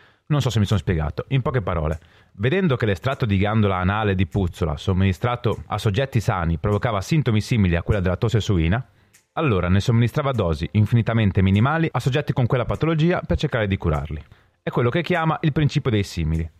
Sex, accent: male, native